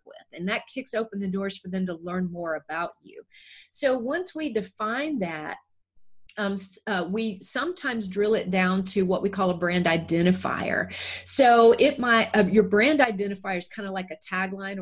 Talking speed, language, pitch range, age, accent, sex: 185 wpm, English, 180-220 Hz, 30-49, American, female